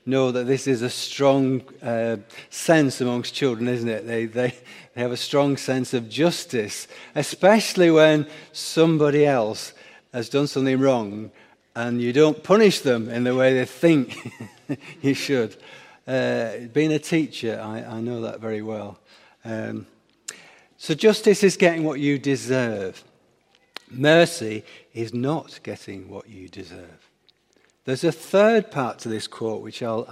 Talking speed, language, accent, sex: 150 wpm, English, British, male